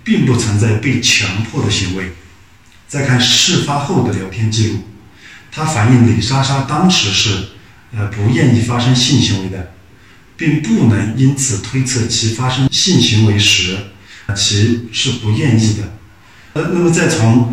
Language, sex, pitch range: Chinese, male, 105-135 Hz